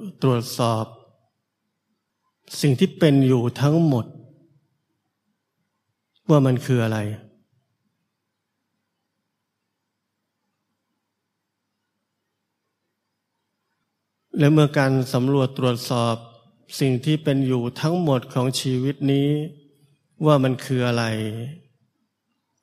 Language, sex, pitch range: Thai, male, 120-145 Hz